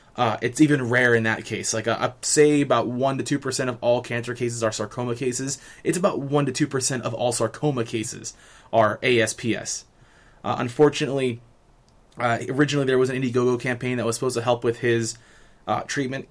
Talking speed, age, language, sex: 195 wpm, 20-39, English, male